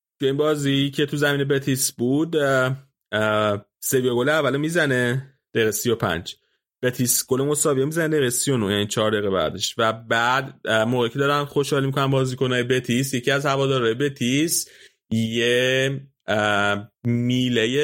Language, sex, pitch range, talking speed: Persian, male, 115-140 Hz, 130 wpm